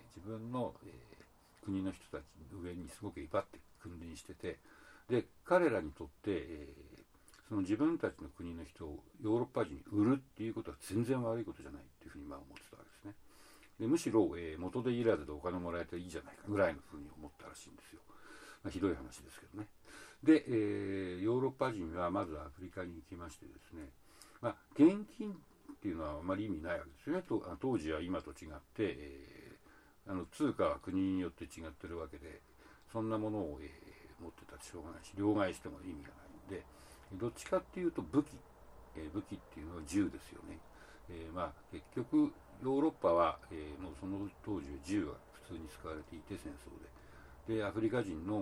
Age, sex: 60-79, male